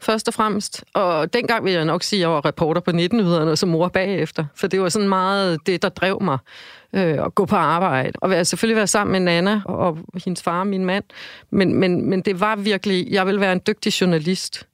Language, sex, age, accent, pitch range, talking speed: Danish, female, 40-59, native, 165-200 Hz, 225 wpm